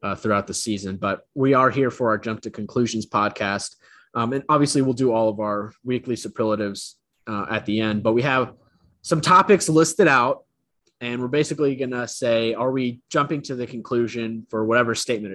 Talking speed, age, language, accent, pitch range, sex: 195 wpm, 20-39, English, American, 110-145 Hz, male